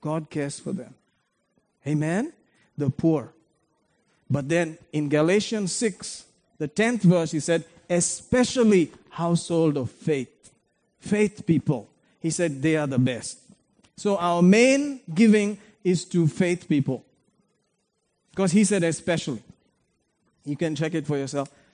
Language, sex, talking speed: English, male, 130 wpm